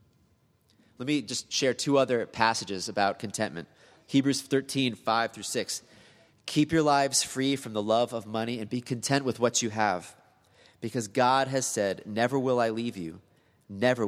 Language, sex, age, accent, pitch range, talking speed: English, male, 30-49, American, 105-135 Hz, 170 wpm